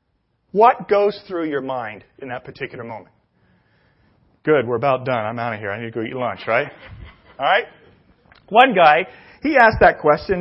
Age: 40-59